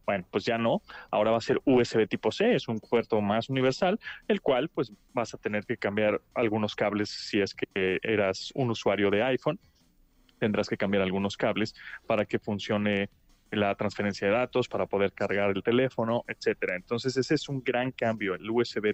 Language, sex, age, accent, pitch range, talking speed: Spanish, male, 30-49, Mexican, 100-120 Hz, 190 wpm